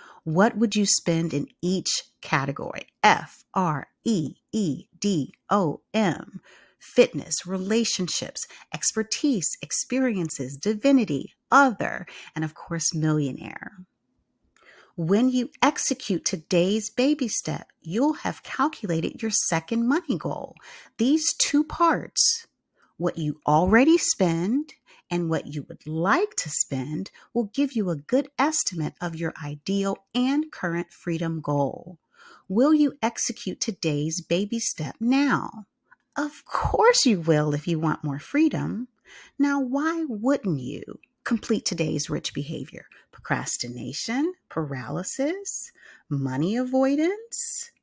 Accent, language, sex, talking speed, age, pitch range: American, English, female, 115 wpm, 40-59, 165-270 Hz